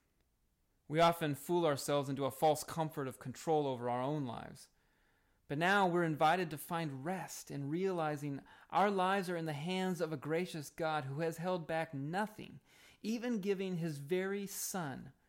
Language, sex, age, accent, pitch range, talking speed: English, male, 30-49, American, 140-180 Hz, 170 wpm